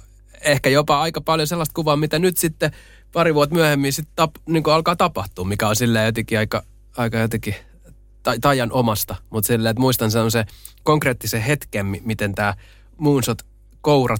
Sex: male